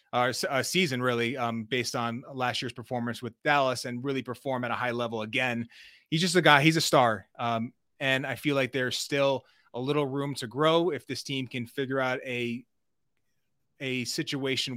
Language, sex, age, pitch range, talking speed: English, male, 30-49, 120-145 Hz, 195 wpm